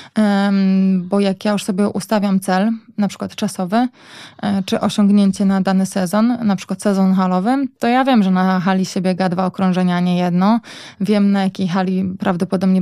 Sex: female